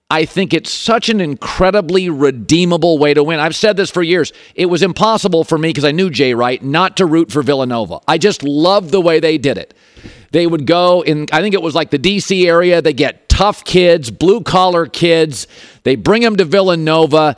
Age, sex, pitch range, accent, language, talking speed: 50-69, male, 155-195 Hz, American, English, 210 wpm